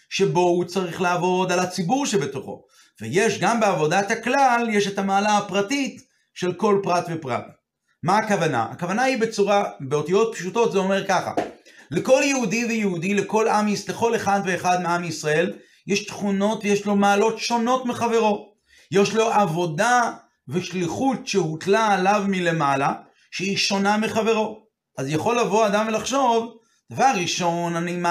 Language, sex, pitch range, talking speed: Hebrew, male, 175-220 Hz, 140 wpm